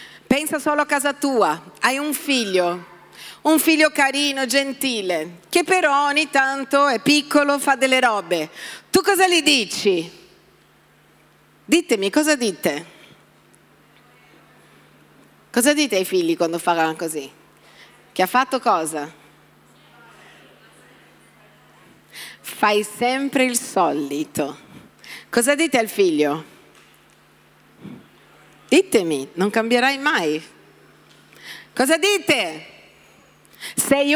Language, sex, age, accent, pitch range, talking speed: Italian, female, 40-59, native, 220-280 Hz, 95 wpm